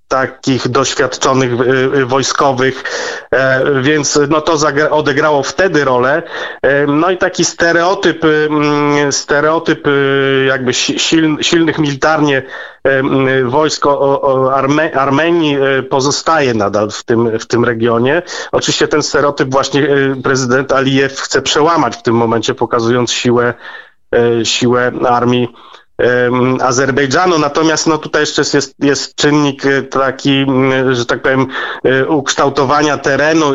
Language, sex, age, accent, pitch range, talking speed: Polish, male, 30-49, native, 130-150 Hz, 105 wpm